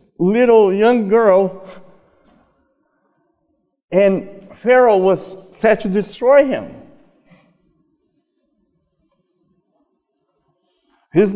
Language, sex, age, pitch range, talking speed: English, male, 50-69, 160-220 Hz, 60 wpm